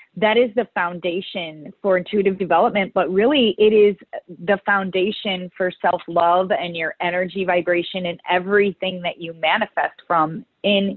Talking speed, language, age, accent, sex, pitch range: 140 wpm, English, 30-49, American, female, 175-215 Hz